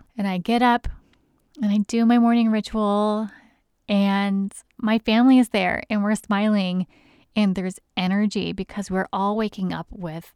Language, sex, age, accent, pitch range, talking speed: English, female, 20-39, American, 175-210 Hz, 155 wpm